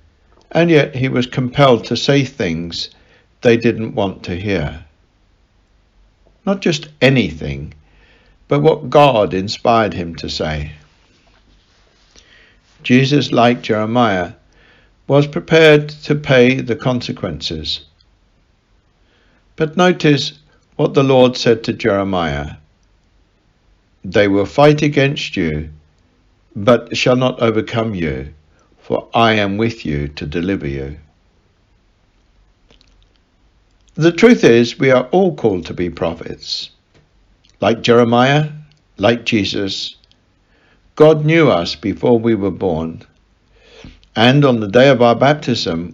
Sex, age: male, 60-79